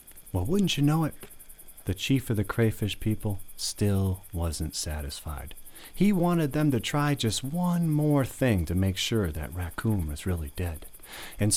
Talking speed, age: 165 wpm, 30-49